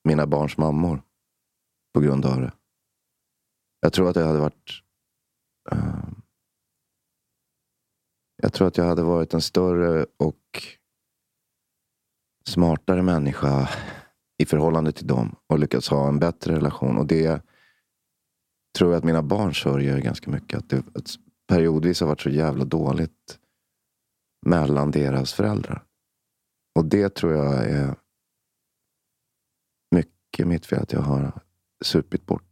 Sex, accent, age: male, native, 30-49